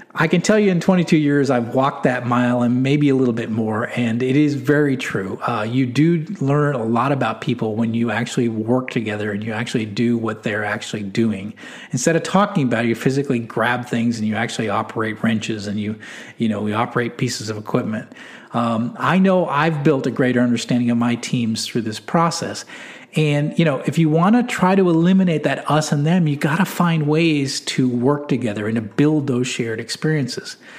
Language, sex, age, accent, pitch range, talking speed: English, male, 40-59, American, 120-180 Hz, 210 wpm